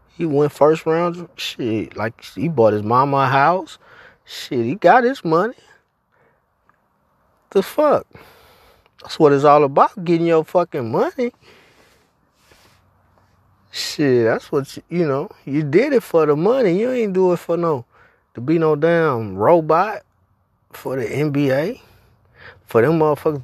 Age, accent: 20-39, American